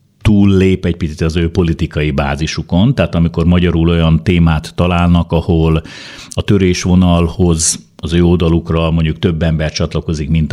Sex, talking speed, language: male, 135 wpm, Hungarian